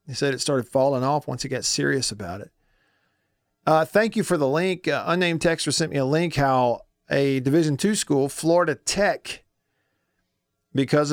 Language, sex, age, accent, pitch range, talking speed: English, male, 50-69, American, 130-160 Hz, 180 wpm